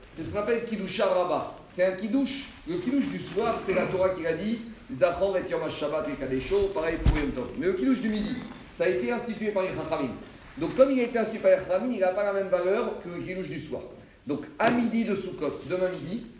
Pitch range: 165-215 Hz